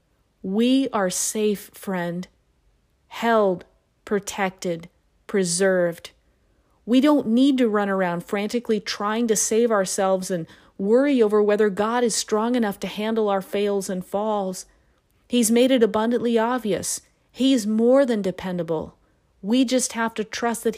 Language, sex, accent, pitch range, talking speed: English, female, American, 195-235 Hz, 135 wpm